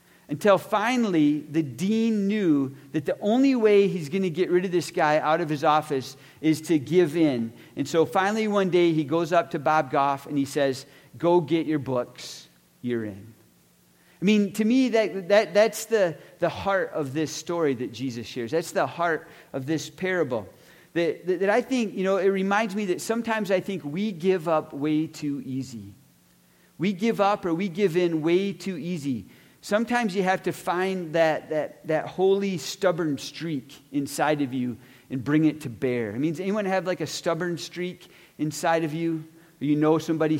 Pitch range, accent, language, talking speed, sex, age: 145-195 Hz, American, English, 195 wpm, male, 40-59